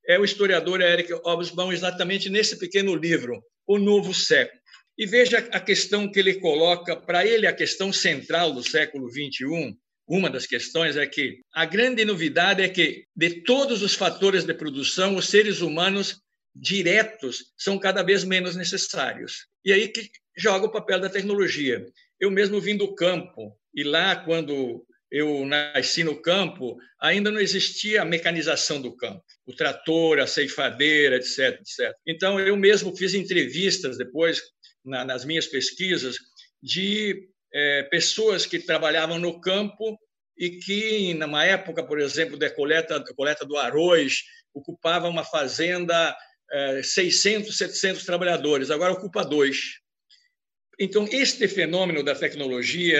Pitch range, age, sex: 160-200 Hz, 60-79, male